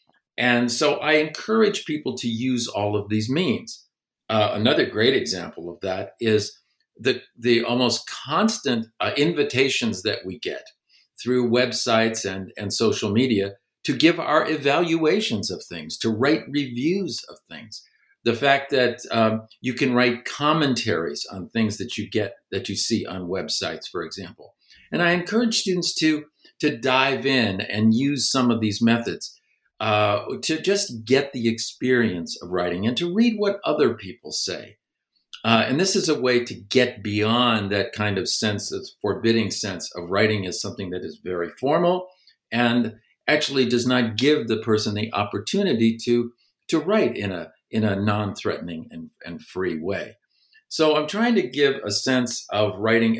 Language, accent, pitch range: English, American, 110-150 Hz